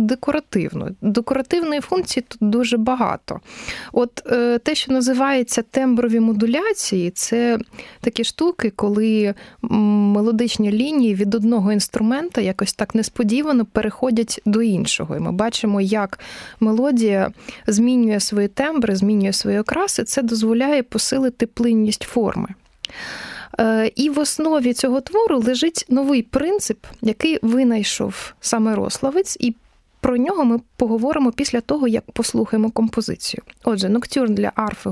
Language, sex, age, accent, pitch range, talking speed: Ukrainian, female, 20-39, native, 215-260 Hz, 120 wpm